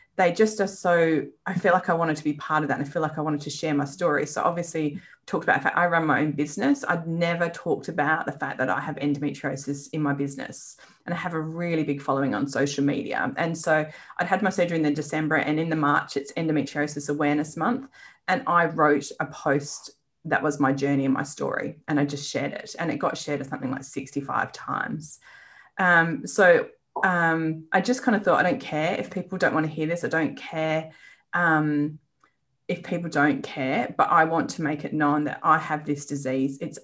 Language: English